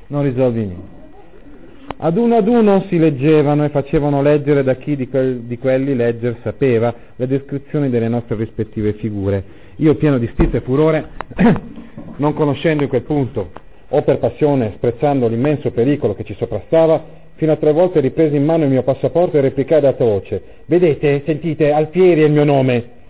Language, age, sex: Italian, 40-59, male